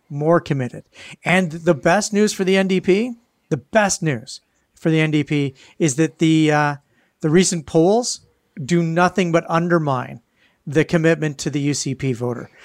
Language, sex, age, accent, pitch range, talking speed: English, male, 40-59, American, 145-185 Hz, 150 wpm